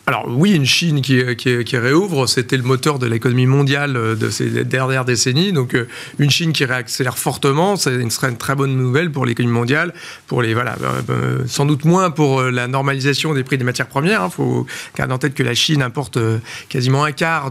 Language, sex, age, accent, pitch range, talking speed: French, male, 40-59, French, 130-165 Hz, 200 wpm